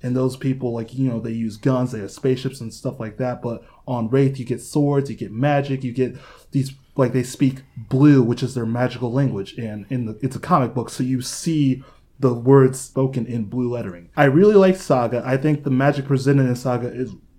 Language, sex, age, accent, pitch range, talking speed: English, male, 20-39, American, 125-155 Hz, 225 wpm